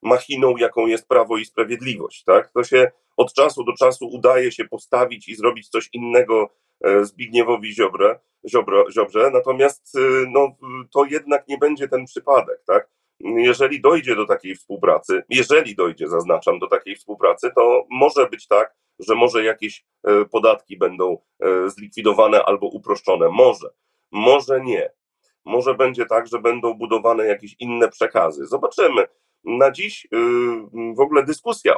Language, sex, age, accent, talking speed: Polish, male, 40-59, native, 140 wpm